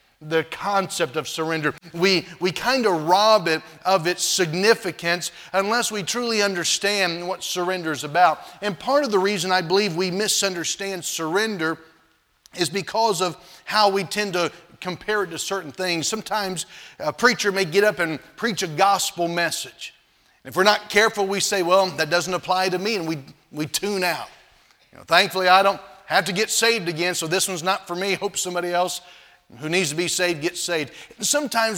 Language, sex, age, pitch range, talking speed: English, male, 40-59, 170-205 Hz, 185 wpm